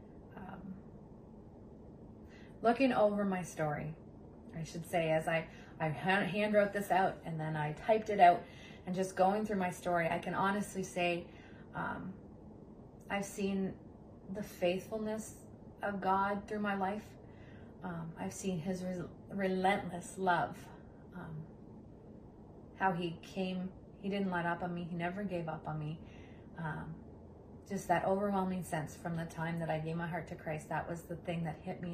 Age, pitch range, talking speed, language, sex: 30-49, 160-190 Hz, 160 wpm, English, female